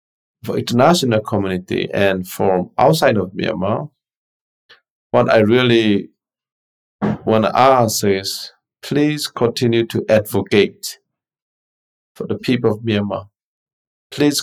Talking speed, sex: 105 wpm, male